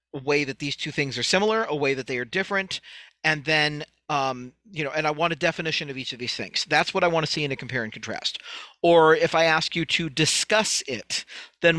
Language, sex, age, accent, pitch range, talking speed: English, male, 40-59, American, 145-175 Hz, 250 wpm